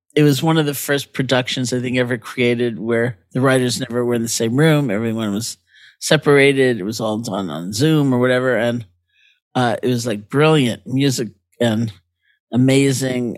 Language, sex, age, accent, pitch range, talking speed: English, male, 50-69, American, 115-140 Hz, 180 wpm